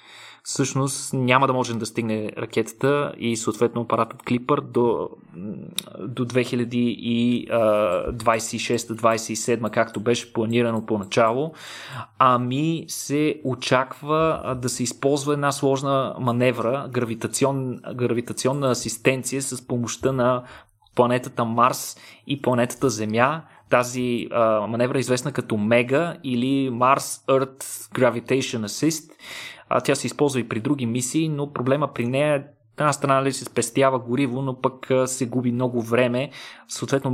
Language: Bulgarian